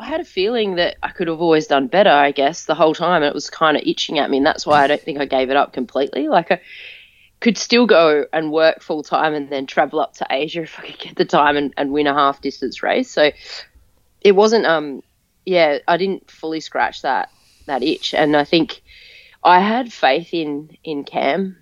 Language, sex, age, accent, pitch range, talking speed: English, female, 20-39, Australian, 140-175 Hz, 230 wpm